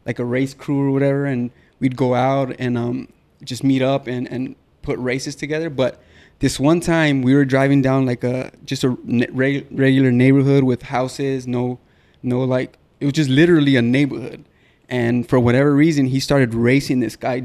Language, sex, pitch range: English, male, 125-145 Hz